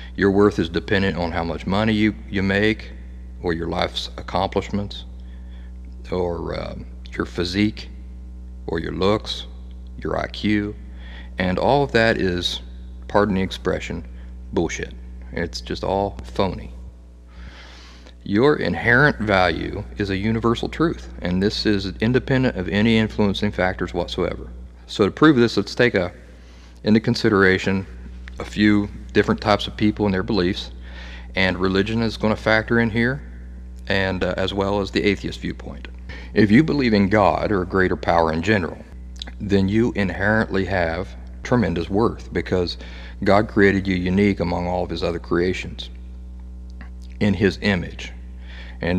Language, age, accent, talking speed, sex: English, 40-59, American, 145 wpm, male